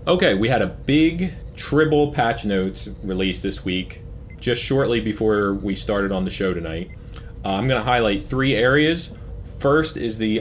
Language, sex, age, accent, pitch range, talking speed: English, male, 30-49, American, 100-125 Hz, 175 wpm